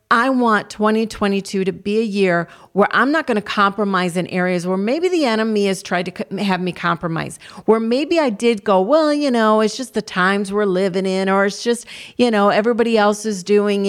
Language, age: English, 40-59